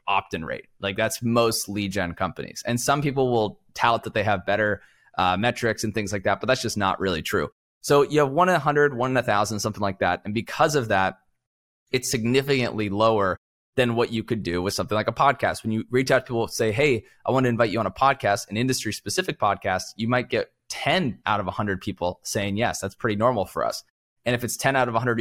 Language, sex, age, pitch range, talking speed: English, male, 20-39, 100-130 Hz, 245 wpm